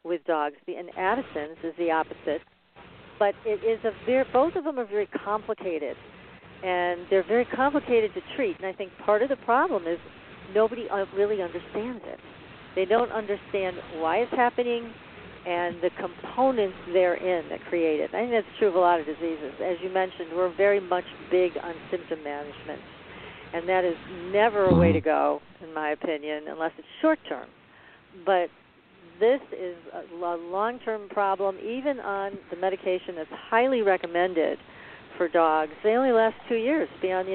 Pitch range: 175-225 Hz